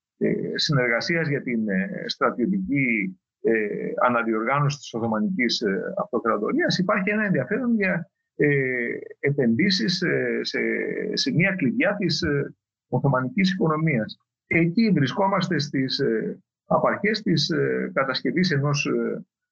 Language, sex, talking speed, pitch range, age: Greek, male, 85 wpm, 125-190 Hz, 50-69